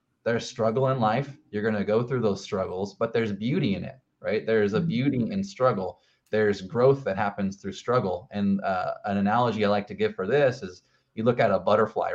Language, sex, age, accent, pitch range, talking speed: English, male, 30-49, American, 105-145 Hz, 210 wpm